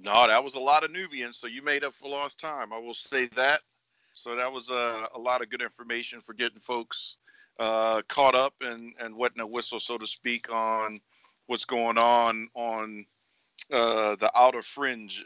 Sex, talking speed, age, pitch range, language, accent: male, 195 wpm, 50-69, 95-115 Hz, English, American